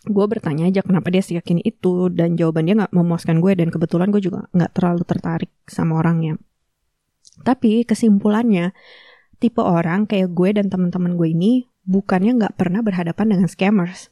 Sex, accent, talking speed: female, native, 160 wpm